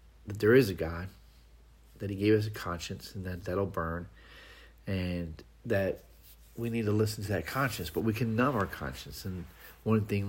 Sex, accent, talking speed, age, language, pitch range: male, American, 190 wpm, 40-59, English, 85-105 Hz